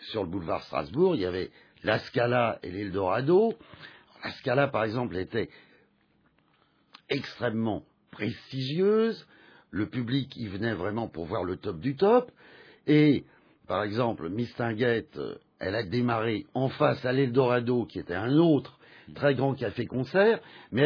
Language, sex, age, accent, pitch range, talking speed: French, male, 50-69, French, 115-160 Hz, 140 wpm